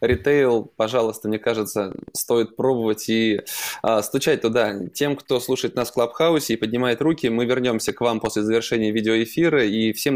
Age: 20-39